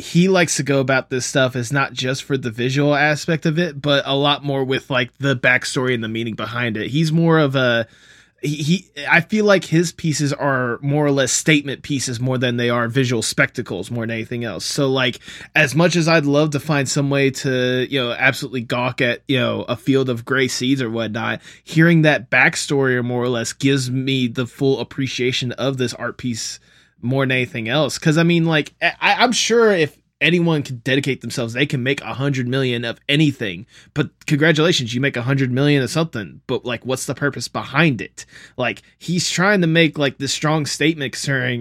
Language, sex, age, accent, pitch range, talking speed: English, male, 20-39, American, 125-155 Hz, 215 wpm